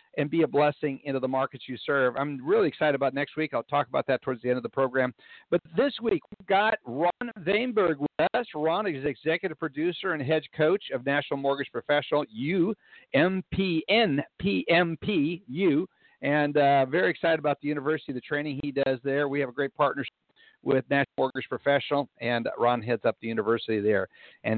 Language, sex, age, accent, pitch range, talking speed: English, male, 50-69, American, 130-165 Hz, 200 wpm